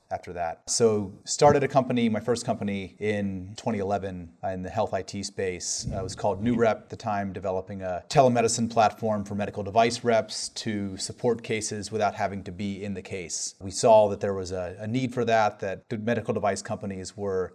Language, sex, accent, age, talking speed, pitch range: English, male, American, 30-49, 200 wpm, 100-115 Hz